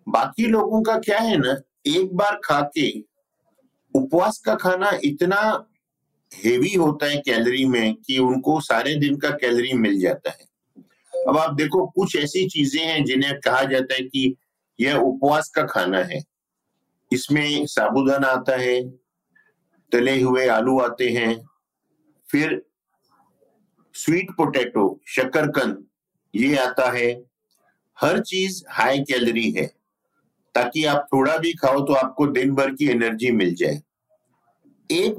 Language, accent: Hindi, native